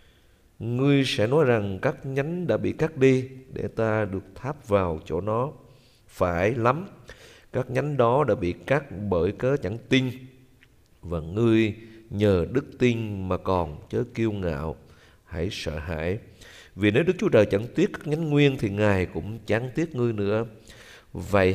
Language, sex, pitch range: Vietnamese, male, 90-125 Hz